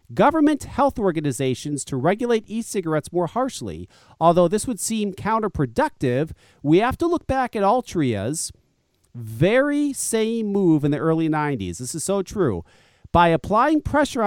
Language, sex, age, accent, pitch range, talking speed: English, male, 40-59, American, 160-225 Hz, 145 wpm